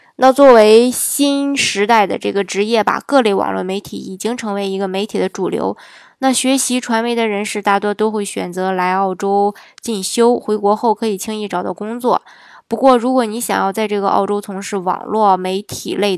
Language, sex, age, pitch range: Chinese, female, 20-39, 195-230 Hz